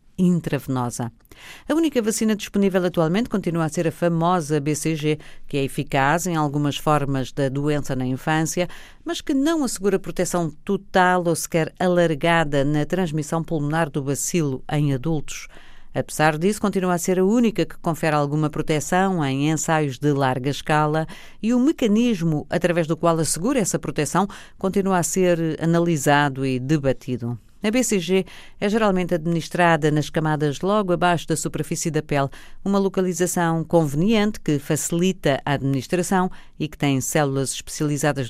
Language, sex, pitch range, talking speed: Portuguese, female, 150-180 Hz, 145 wpm